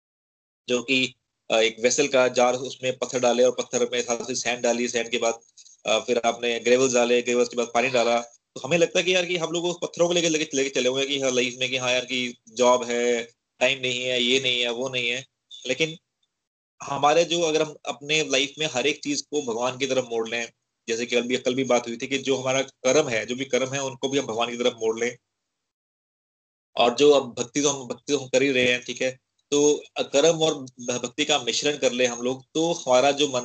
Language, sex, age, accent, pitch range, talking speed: Hindi, male, 20-39, native, 120-145 Hz, 230 wpm